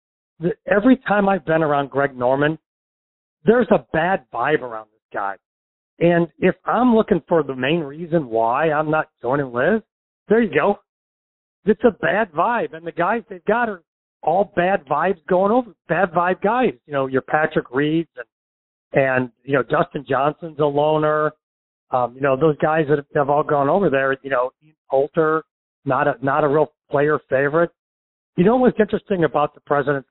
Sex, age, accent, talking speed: male, 40-59, American, 180 wpm